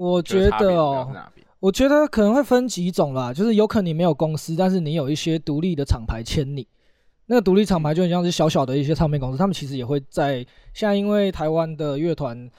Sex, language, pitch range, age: male, Chinese, 140-185 Hz, 20-39